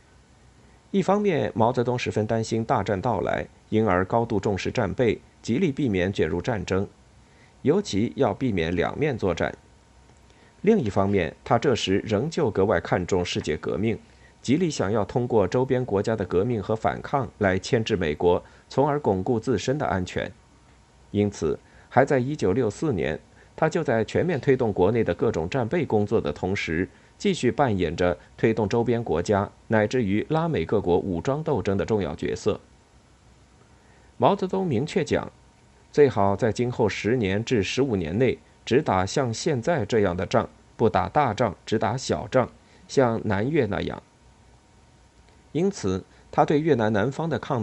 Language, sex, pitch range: Chinese, male, 100-130 Hz